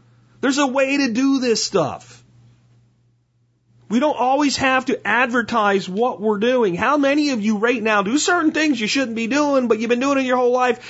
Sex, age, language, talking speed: male, 40-59, English, 205 wpm